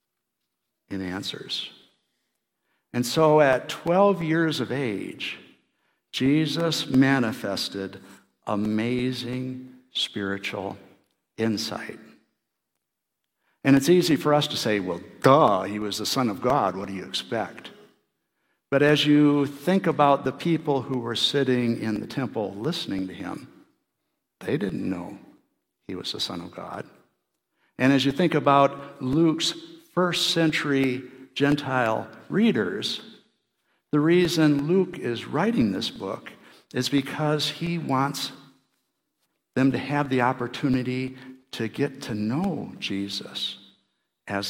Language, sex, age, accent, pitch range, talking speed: English, male, 60-79, American, 115-150 Hz, 120 wpm